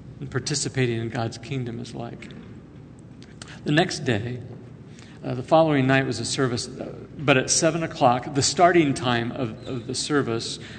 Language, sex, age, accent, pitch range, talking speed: English, male, 50-69, American, 120-140 Hz, 155 wpm